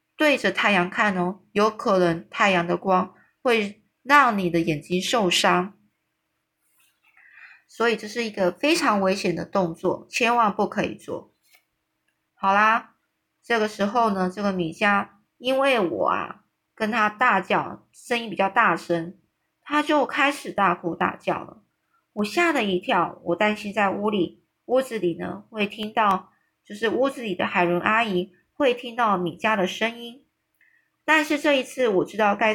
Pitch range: 180-235 Hz